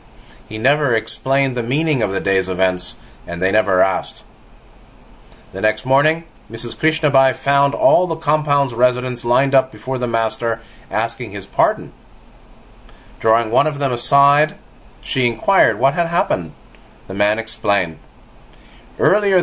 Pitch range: 110-135 Hz